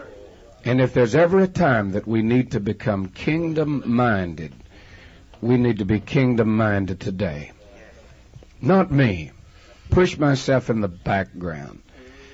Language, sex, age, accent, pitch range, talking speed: English, male, 60-79, American, 100-130 Hz, 120 wpm